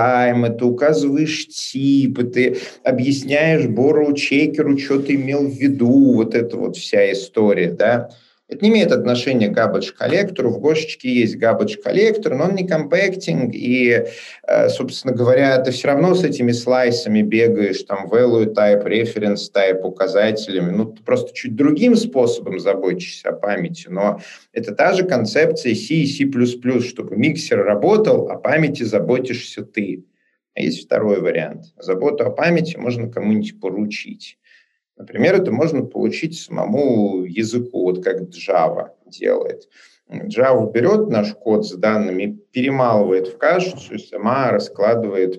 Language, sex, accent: Russian, male, native